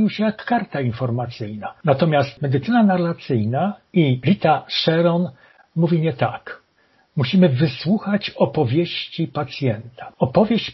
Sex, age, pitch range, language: male, 50-69, 140-190 Hz, Polish